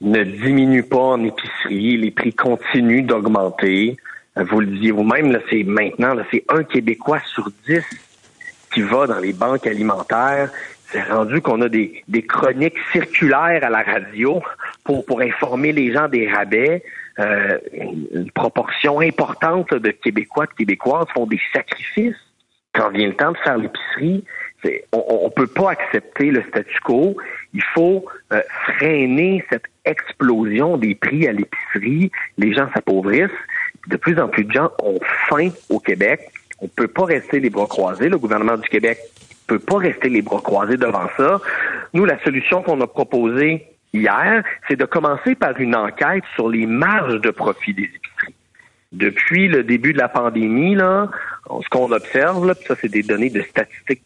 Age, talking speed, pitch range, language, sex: 50-69, 170 wpm, 115-180 Hz, French, male